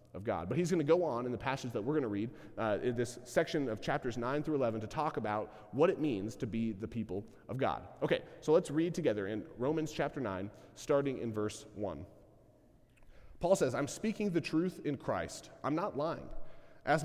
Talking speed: 215 wpm